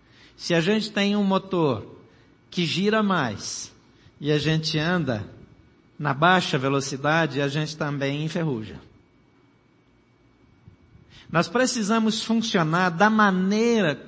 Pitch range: 135-190 Hz